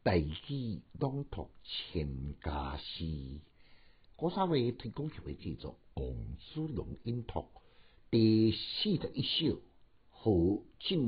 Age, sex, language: 60-79, male, Chinese